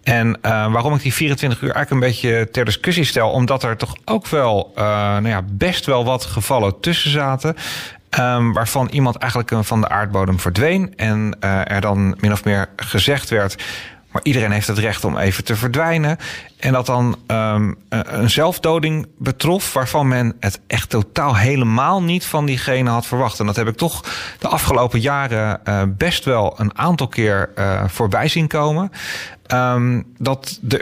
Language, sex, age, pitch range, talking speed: Dutch, male, 40-59, 110-135 Hz, 175 wpm